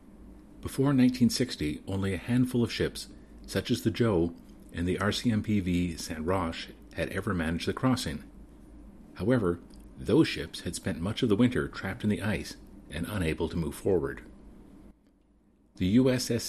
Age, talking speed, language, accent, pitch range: 40-59, 150 wpm, English, American, 85-115 Hz